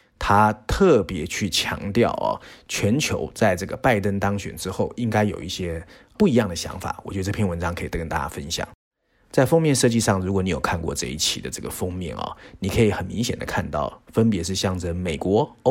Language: Chinese